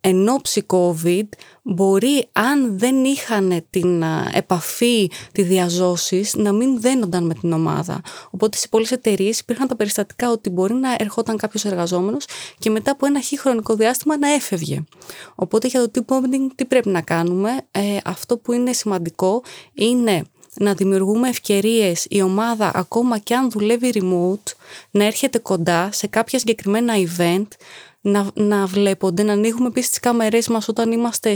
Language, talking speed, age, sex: Greek, 155 wpm, 20-39, female